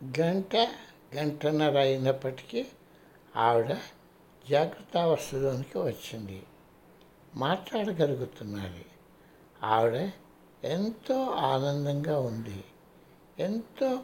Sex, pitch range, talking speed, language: male, 120-175 Hz, 55 wpm, Telugu